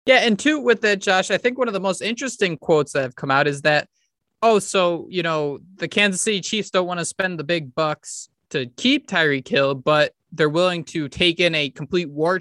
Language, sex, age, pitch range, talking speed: English, male, 20-39, 160-210 Hz, 230 wpm